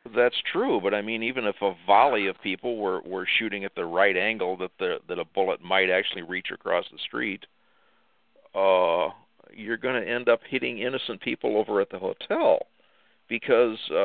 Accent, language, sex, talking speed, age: American, English, male, 185 wpm, 50-69